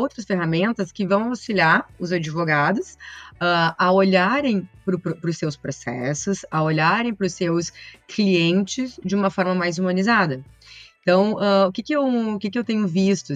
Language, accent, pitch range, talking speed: Portuguese, Brazilian, 150-190 Hz, 170 wpm